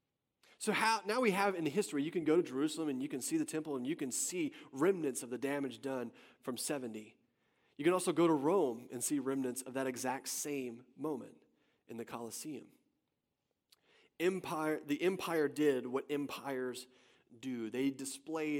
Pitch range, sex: 125-160 Hz, male